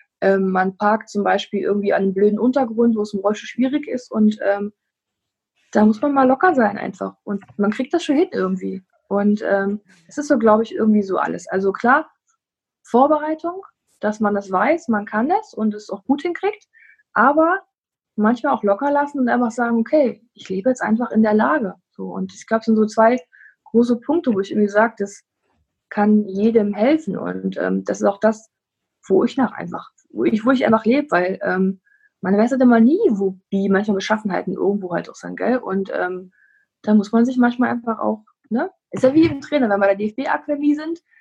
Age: 20-39